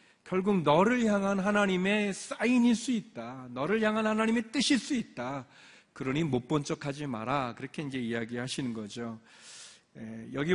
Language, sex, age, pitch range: Korean, male, 40-59, 125-170 Hz